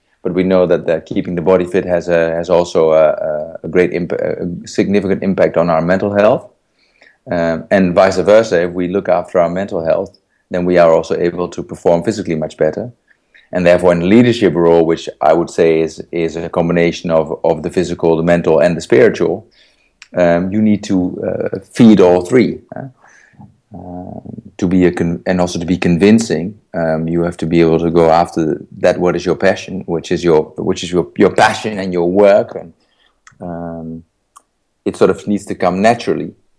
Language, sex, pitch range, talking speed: English, male, 85-95 Hz, 200 wpm